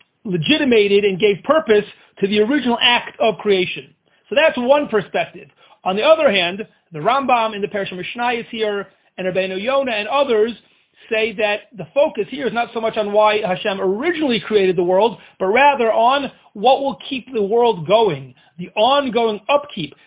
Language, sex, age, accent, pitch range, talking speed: English, male, 40-59, American, 195-255 Hz, 175 wpm